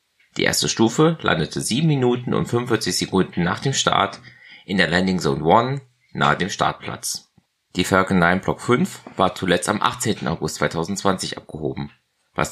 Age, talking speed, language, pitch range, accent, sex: 30-49, 160 wpm, German, 90-125 Hz, German, male